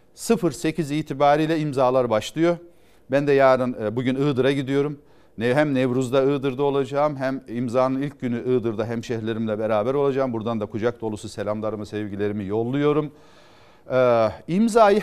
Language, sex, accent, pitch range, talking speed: Turkish, male, native, 125-185 Hz, 120 wpm